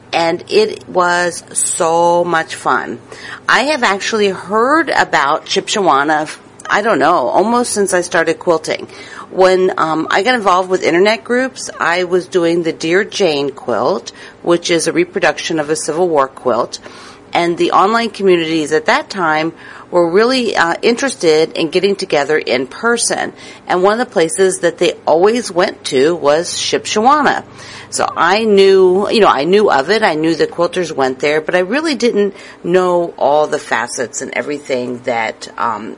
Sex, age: female, 50-69